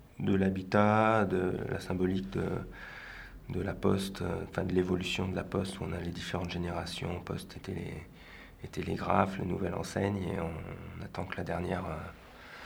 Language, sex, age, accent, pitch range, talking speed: French, male, 30-49, French, 90-100 Hz, 175 wpm